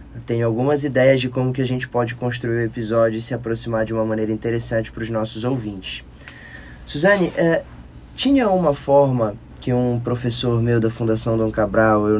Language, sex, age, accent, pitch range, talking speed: Portuguese, male, 20-39, Brazilian, 105-125 Hz, 185 wpm